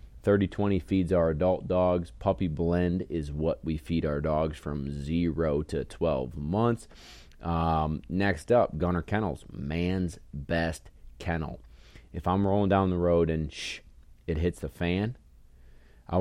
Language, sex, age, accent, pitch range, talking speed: English, male, 30-49, American, 70-90 Hz, 150 wpm